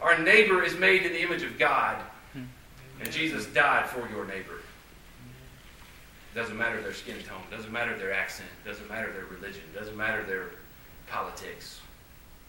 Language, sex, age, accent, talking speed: English, male, 40-59, American, 175 wpm